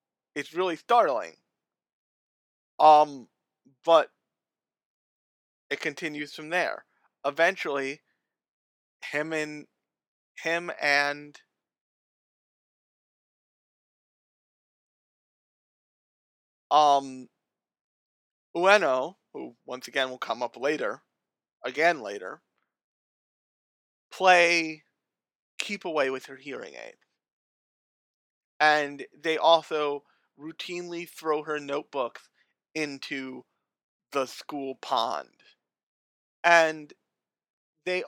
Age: 40-59